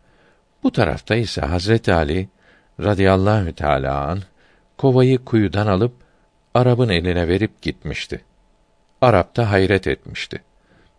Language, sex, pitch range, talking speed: Turkish, male, 90-120 Hz, 105 wpm